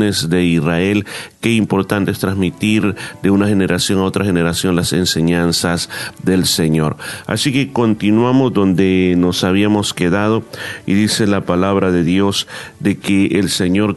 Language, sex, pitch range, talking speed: Spanish, male, 95-110 Hz, 140 wpm